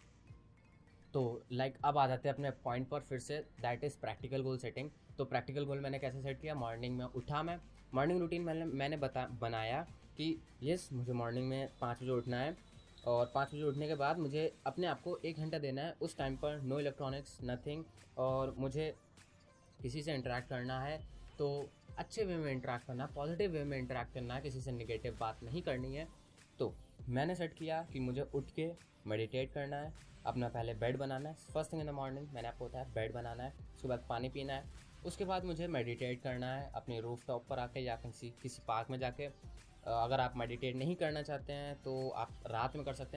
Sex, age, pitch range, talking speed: male, 20-39, 120-150 Hz, 210 wpm